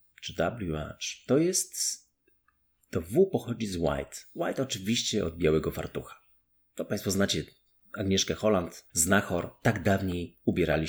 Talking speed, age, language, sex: 125 wpm, 30-49, Polish, male